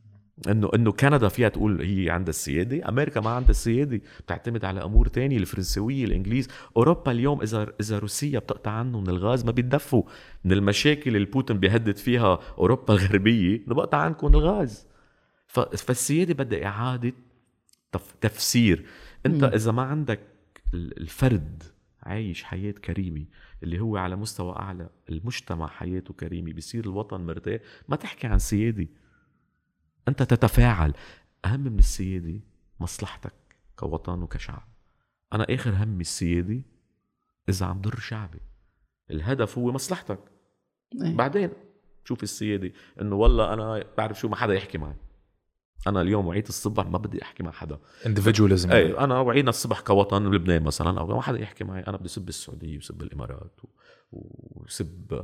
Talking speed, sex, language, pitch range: 135 wpm, male, Arabic, 95-120 Hz